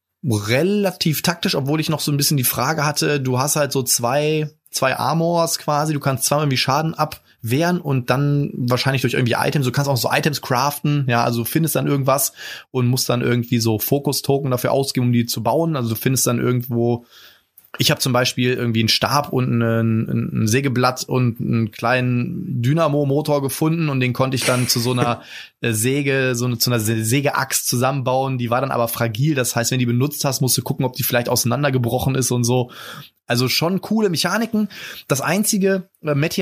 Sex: male